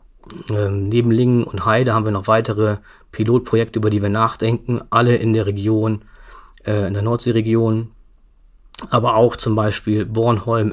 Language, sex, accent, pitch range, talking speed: German, male, German, 105-120 Hz, 150 wpm